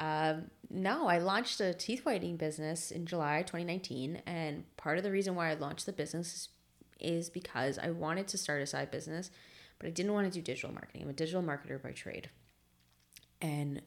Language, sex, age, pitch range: English, female, 20-39, 140-180 Hz